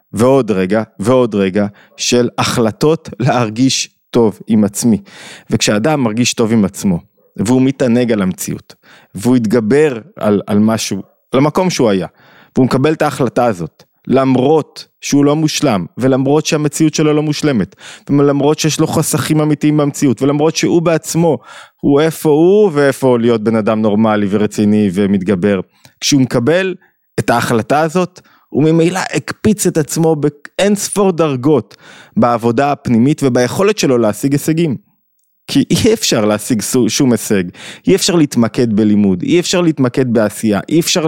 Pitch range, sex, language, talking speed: 110-155 Hz, male, Hebrew, 140 wpm